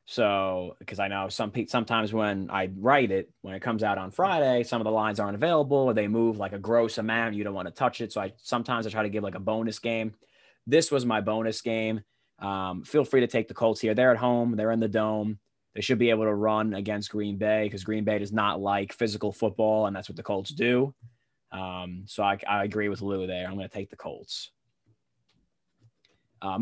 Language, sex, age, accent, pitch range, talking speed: English, male, 20-39, American, 100-120 Hz, 235 wpm